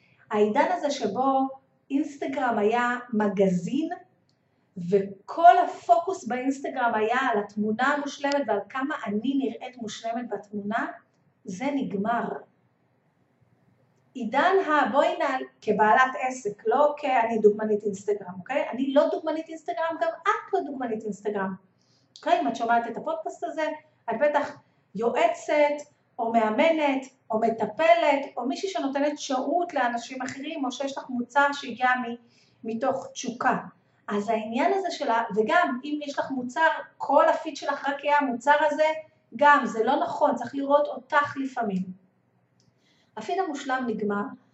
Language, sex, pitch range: Hebrew, female, 220-300 Hz